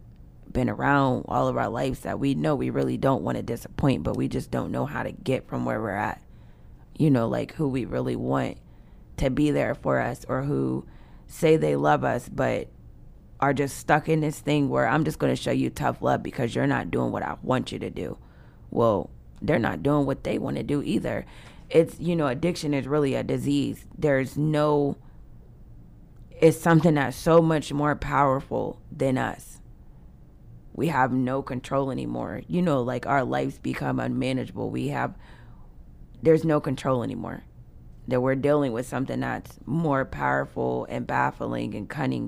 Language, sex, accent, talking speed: English, female, American, 185 wpm